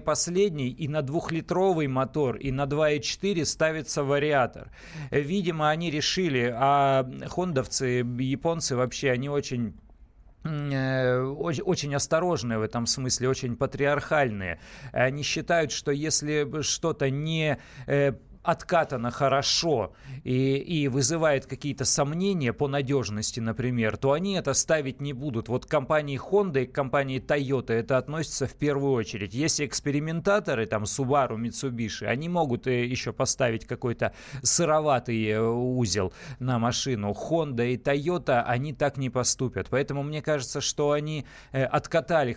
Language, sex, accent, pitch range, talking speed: Russian, male, native, 120-150 Hz, 125 wpm